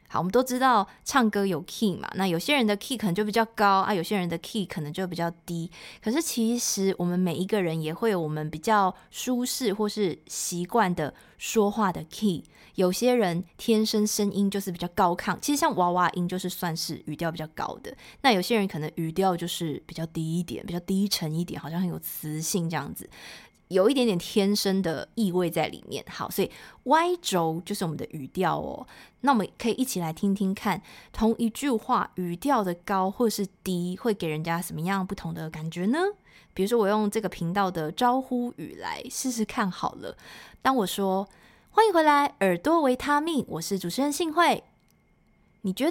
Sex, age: female, 20-39